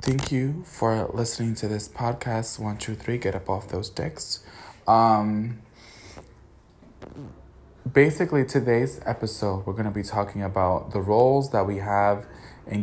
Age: 20-39